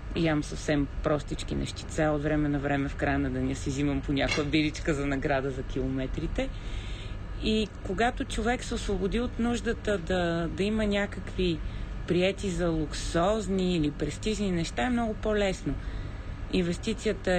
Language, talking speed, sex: Bulgarian, 145 wpm, female